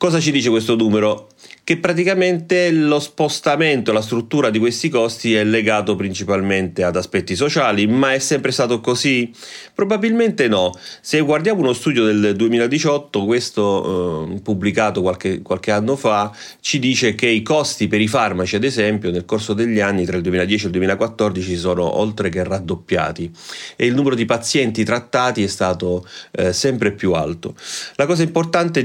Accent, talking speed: native, 165 wpm